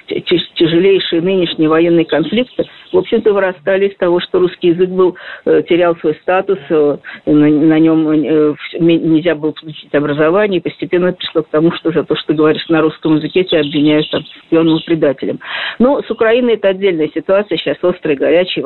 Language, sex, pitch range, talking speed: Russian, female, 165-225 Hz, 165 wpm